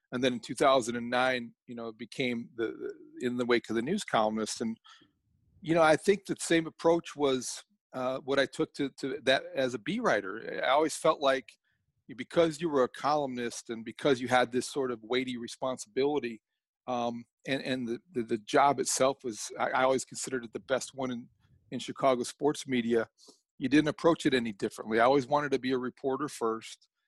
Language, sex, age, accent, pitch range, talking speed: English, male, 40-59, American, 120-140 Hz, 195 wpm